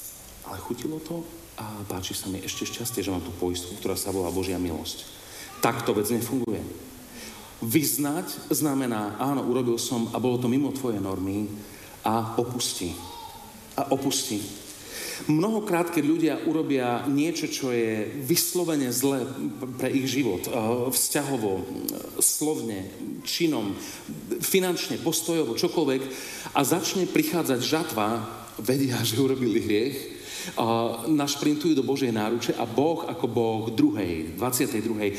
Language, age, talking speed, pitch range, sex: Slovak, 40-59, 125 wpm, 105-155 Hz, male